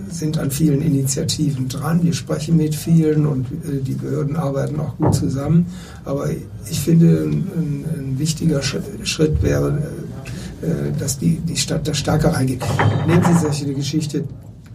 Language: German